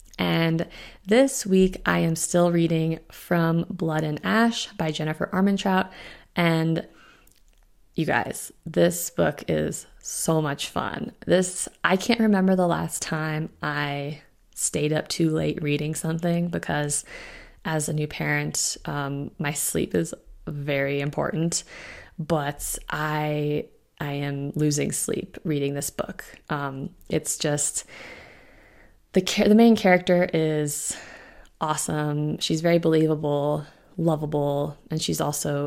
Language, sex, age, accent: English, female, 20-39, American